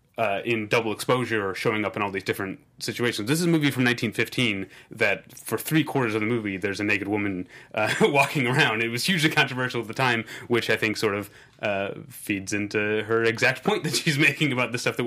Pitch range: 100-125 Hz